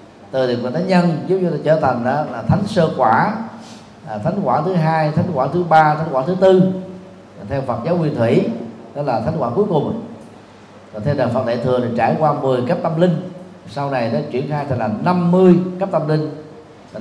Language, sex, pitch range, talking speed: Vietnamese, male, 130-200 Hz, 215 wpm